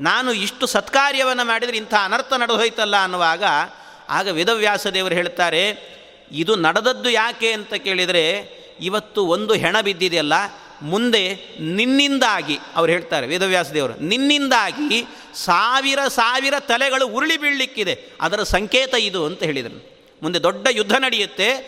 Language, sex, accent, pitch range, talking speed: Kannada, male, native, 195-255 Hz, 110 wpm